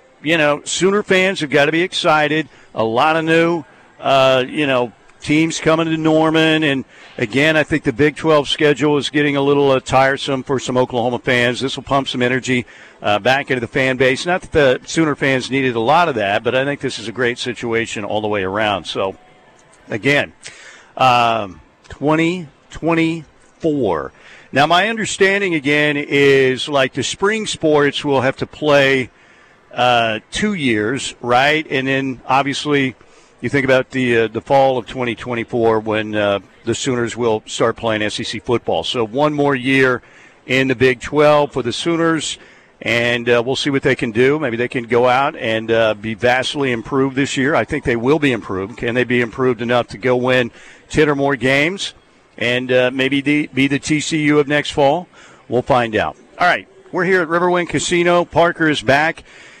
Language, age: English, 50-69